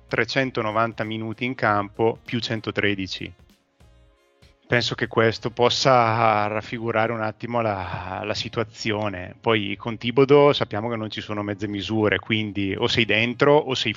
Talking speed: 140 wpm